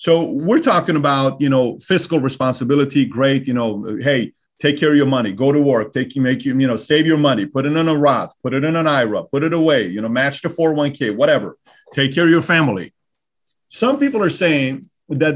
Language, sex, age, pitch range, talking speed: English, male, 40-59, 135-160 Hz, 225 wpm